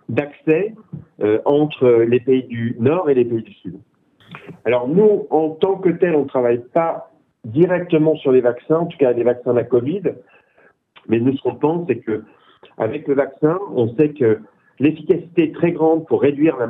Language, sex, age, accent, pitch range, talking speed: French, male, 40-59, French, 120-160 Hz, 185 wpm